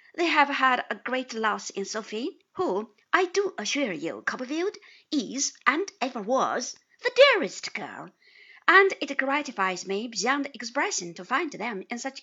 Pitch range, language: 225-365 Hz, Chinese